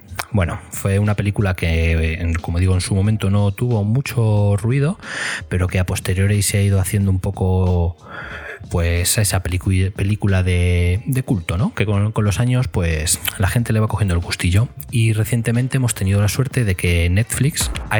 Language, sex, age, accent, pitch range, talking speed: Spanish, male, 20-39, Spanish, 90-105 Hz, 180 wpm